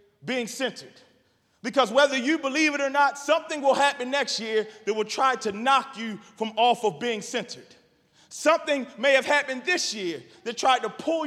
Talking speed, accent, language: 185 wpm, American, English